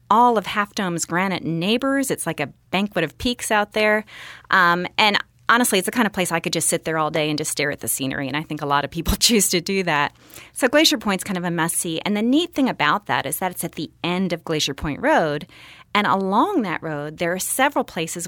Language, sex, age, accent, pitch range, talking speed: English, female, 30-49, American, 165-220 Hz, 255 wpm